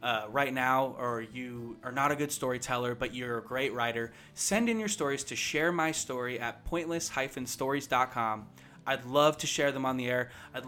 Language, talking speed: English, 190 wpm